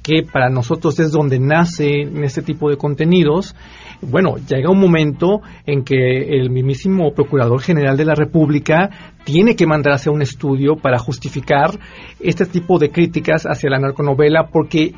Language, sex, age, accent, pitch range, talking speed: Spanish, male, 40-59, Mexican, 150-200 Hz, 160 wpm